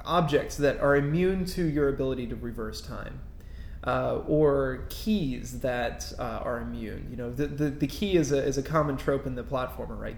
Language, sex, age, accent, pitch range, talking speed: English, male, 20-39, American, 120-155 Hz, 195 wpm